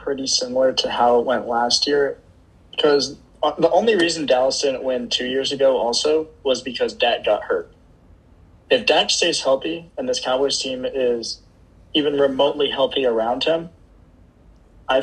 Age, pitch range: 20-39, 115-145 Hz